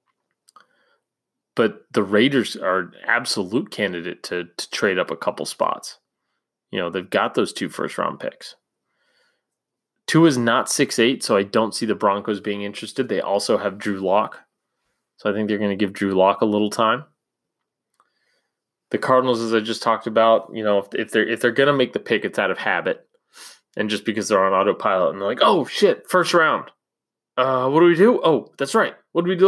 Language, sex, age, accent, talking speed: English, male, 20-39, American, 200 wpm